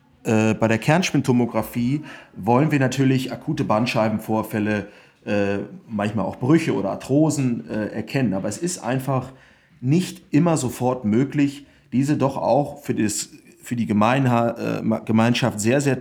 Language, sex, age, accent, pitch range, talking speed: German, male, 30-49, German, 105-130 Hz, 110 wpm